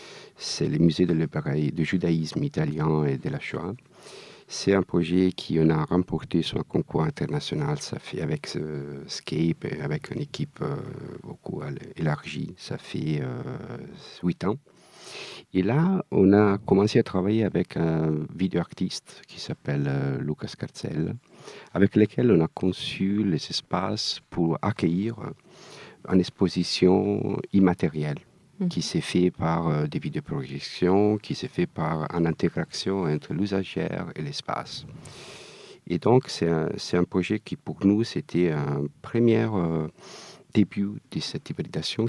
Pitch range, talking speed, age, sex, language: 75-105 Hz, 145 wpm, 50-69, male, French